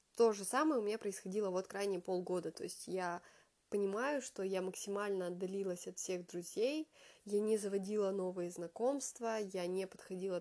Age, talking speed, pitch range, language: 20-39, 160 wpm, 185-225 Hz, Russian